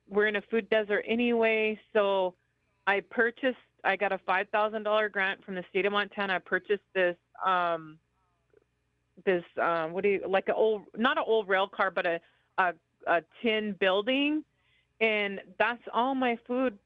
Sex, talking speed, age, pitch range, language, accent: female, 175 wpm, 30-49, 190-225 Hz, English, American